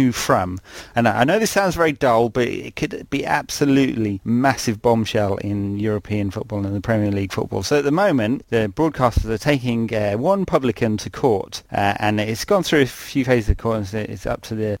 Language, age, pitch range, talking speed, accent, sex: English, 30-49, 105-125 Hz, 205 wpm, British, male